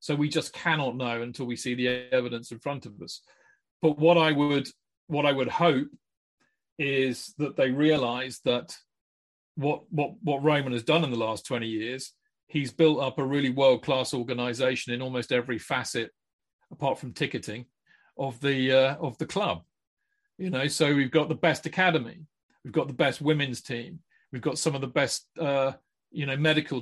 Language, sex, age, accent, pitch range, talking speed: English, male, 40-59, British, 125-160 Hz, 185 wpm